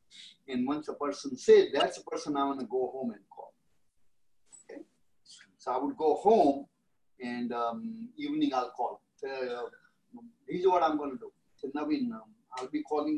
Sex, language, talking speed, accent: male, Tamil, 185 wpm, native